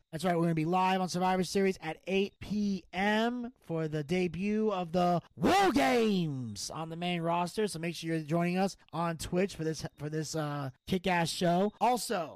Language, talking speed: English, 190 wpm